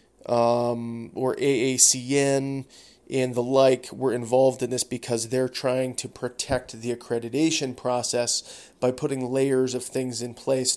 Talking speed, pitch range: 140 wpm, 120-135 Hz